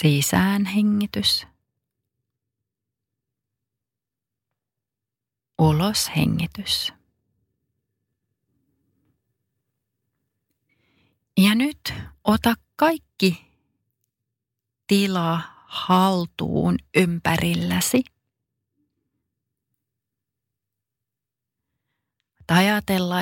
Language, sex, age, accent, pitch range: Finnish, female, 30-49, native, 115-185 Hz